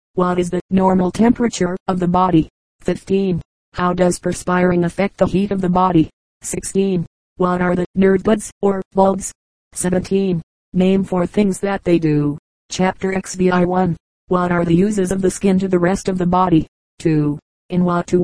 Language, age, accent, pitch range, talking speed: English, 30-49, American, 175-190 Hz, 175 wpm